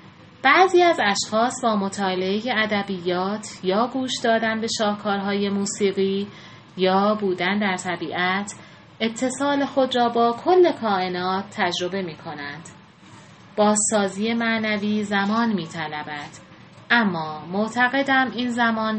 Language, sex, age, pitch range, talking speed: English, female, 30-49, 185-230 Hz, 105 wpm